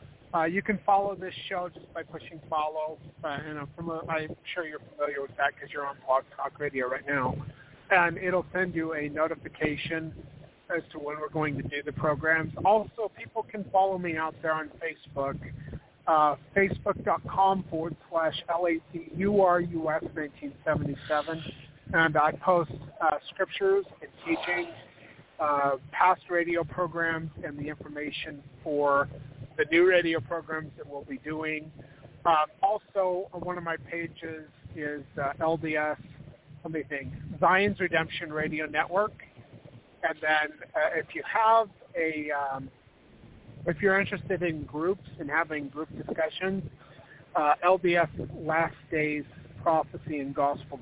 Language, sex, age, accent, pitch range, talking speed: English, male, 40-59, American, 145-170 Hz, 145 wpm